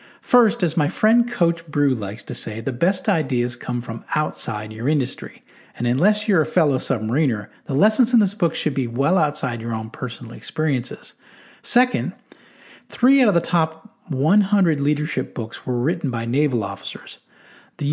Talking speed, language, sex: 170 wpm, English, male